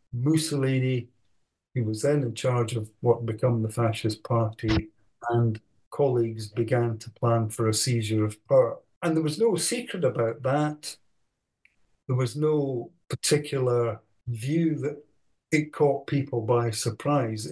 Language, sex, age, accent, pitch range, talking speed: English, male, 50-69, British, 115-150 Hz, 135 wpm